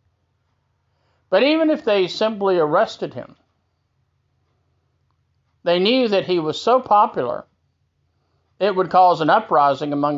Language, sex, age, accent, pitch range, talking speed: English, male, 50-69, American, 135-200 Hz, 120 wpm